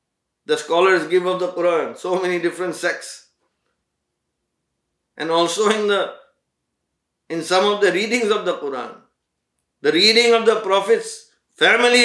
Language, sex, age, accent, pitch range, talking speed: English, male, 50-69, Indian, 175-260 Hz, 140 wpm